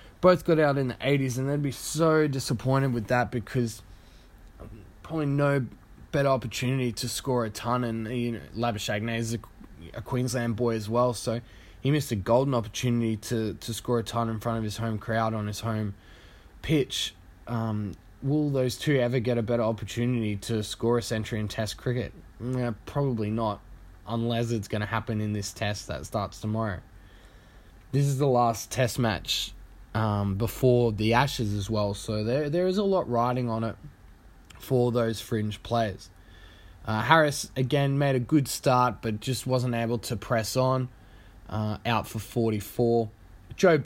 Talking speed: 175 wpm